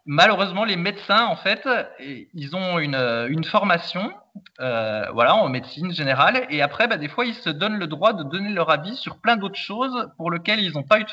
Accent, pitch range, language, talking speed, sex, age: French, 150-210 Hz, French, 215 wpm, male, 20-39